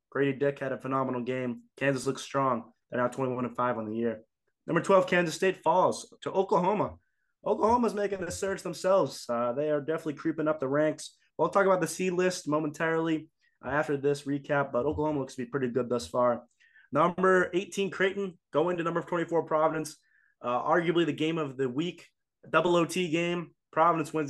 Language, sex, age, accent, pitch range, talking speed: English, male, 20-39, American, 135-170 Hz, 190 wpm